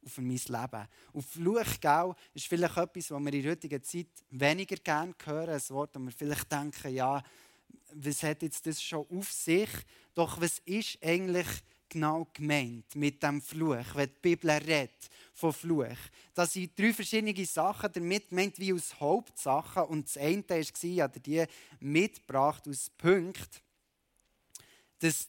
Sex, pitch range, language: male, 145-175 Hz, German